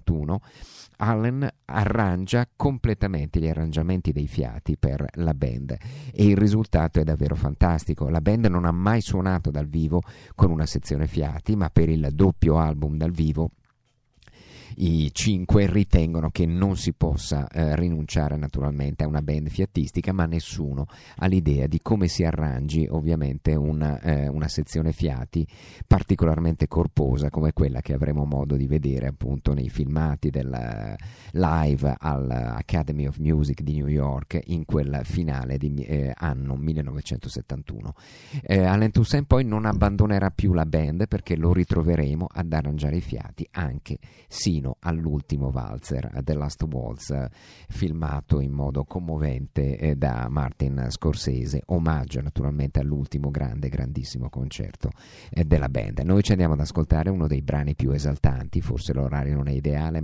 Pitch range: 70-90 Hz